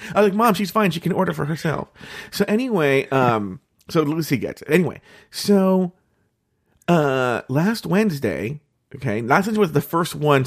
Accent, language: American, English